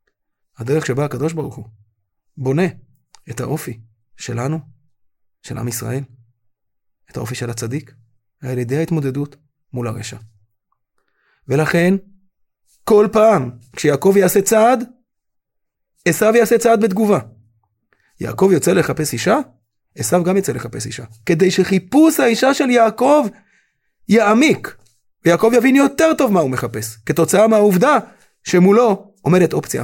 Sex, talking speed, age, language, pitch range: male, 120 wpm, 30-49, Hebrew, 120-200 Hz